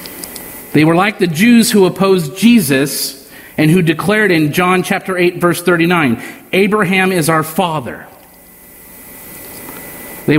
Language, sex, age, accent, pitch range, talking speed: English, male, 50-69, American, 155-200 Hz, 125 wpm